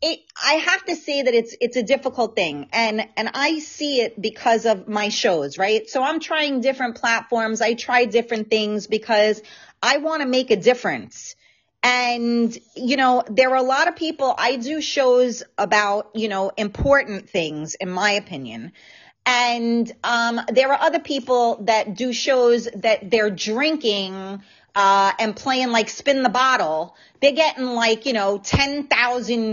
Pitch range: 205-260 Hz